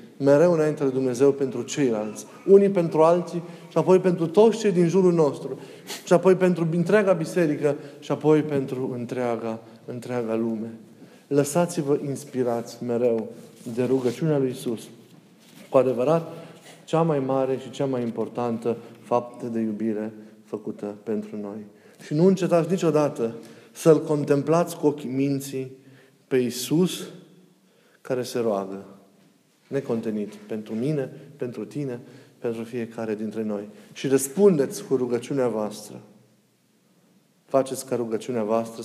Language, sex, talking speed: Romanian, male, 125 wpm